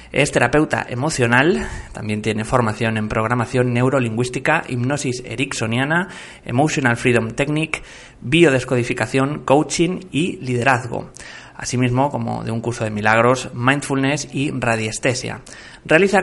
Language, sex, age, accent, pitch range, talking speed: Spanish, male, 30-49, Spanish, 115-130 Hz, 105 wpm